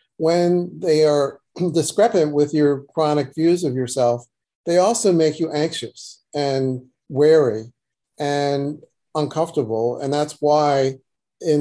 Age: 40-59